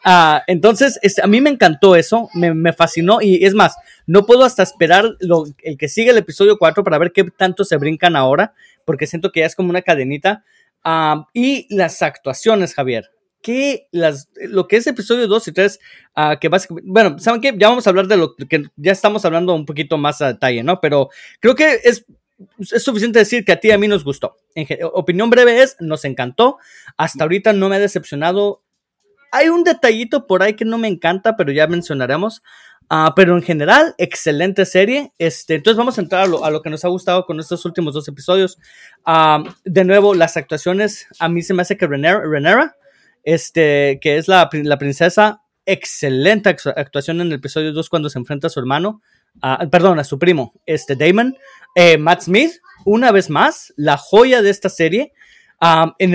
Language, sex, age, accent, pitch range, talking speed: Spanish, male, 30-49, Mexican, 160-220 Hz, 205 wpm